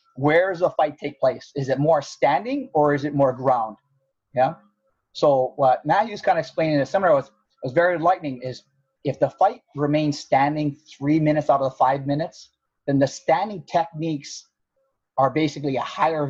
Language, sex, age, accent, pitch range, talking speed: English, male, 30-49, American, 135-165 Hz, 185 wpm